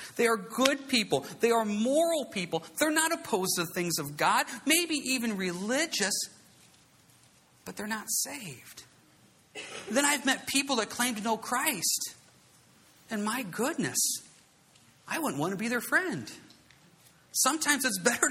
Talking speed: 150 wpm